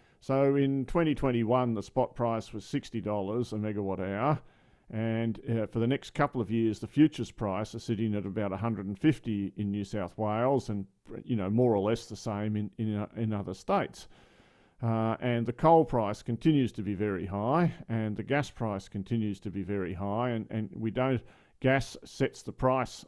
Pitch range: 105-130 Hz